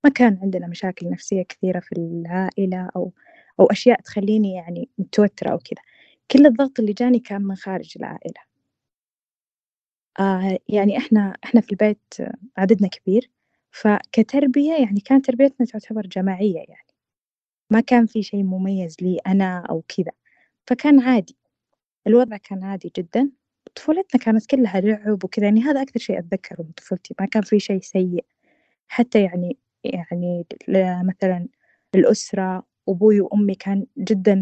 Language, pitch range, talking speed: Arabic, 190-240 Hz, 140 wpm